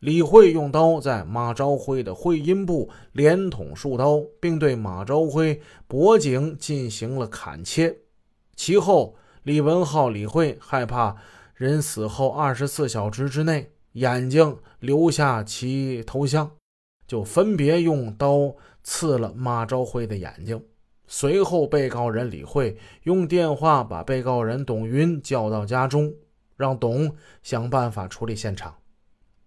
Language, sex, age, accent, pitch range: Chinese, male, 20-39, native, 115-150 Hz